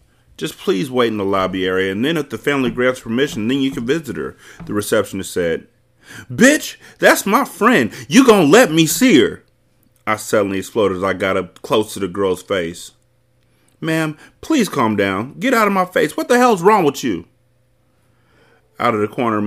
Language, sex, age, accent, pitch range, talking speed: English, male, 30-49, American, 100-135 Hz, 195 wpm